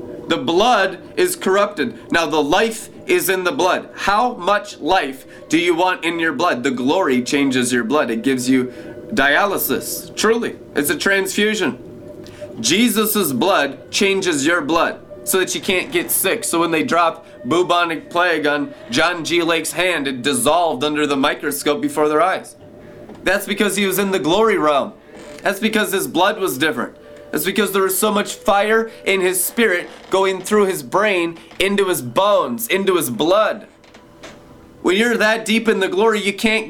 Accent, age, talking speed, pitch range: American, 20-39, 175 wpm, 170-210 Hz